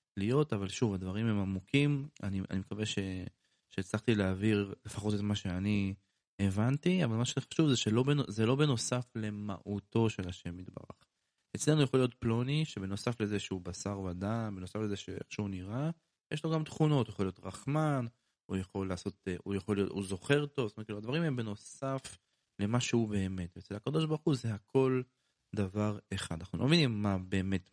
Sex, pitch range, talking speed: male, 95-135 Hz, 170 wpm